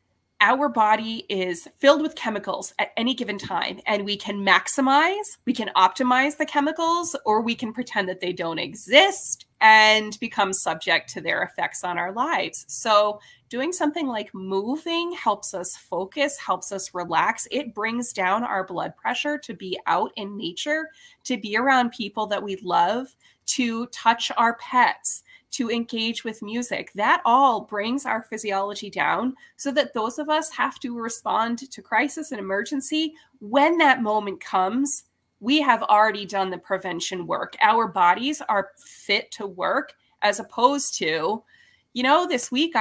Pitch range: 210-295 Hz